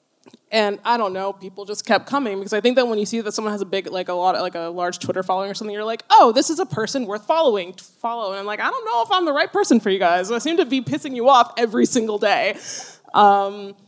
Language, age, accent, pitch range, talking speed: English, 20-39, American, 195-255 Hz, 285 wpm